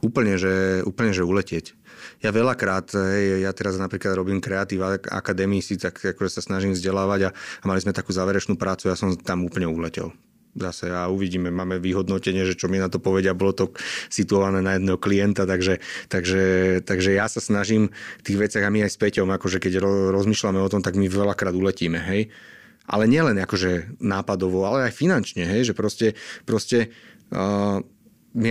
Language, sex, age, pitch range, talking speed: Slovak, male, 30-49, 95-105 Hz, 180 wpm